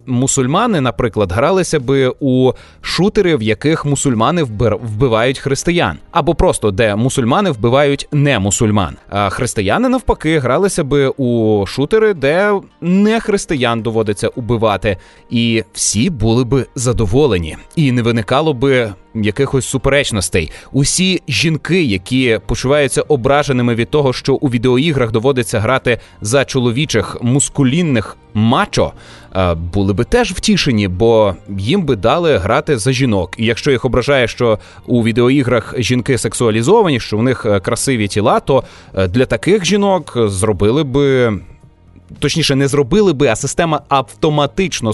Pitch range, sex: 110-145 Hz, male